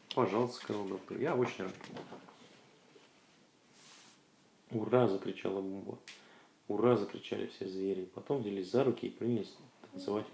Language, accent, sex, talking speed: Russian, native, male, 115 wpm